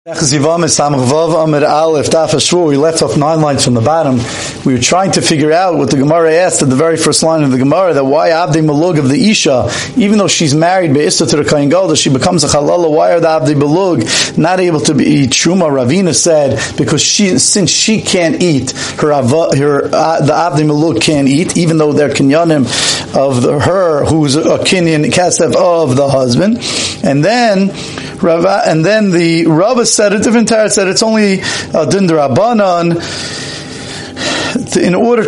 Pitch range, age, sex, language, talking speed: 145-175 Hz, 40-59, male, English, 170 wpm